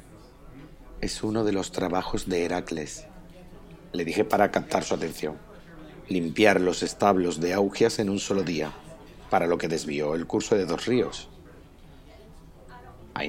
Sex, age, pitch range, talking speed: male, 50-69, 90-115 Hz, 145 wpm